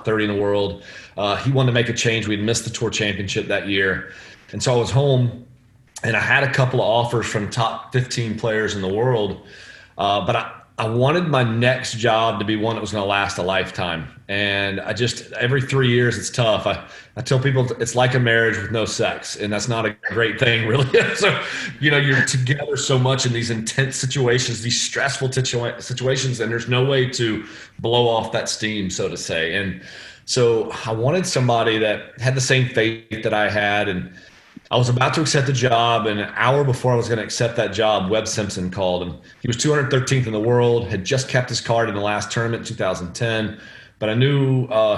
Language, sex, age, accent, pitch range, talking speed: English, male, 30-49, American, 100-125 Hz, 220 wpm